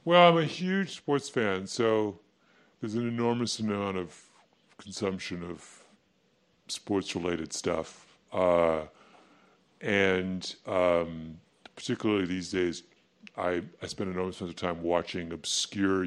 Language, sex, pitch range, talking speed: English, female, 95-155 Hz, 120 wpm